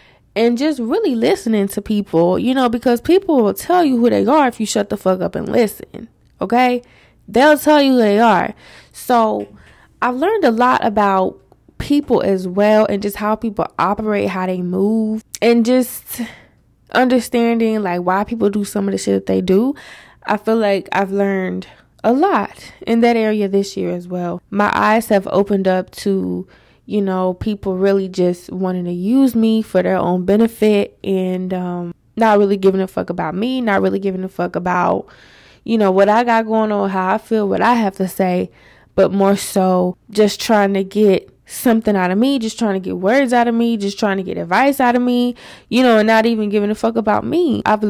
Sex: female